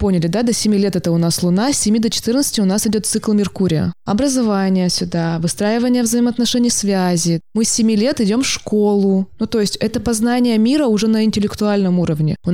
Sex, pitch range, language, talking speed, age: female, 175-220 Hz, Russian, 195 wpm, 20-39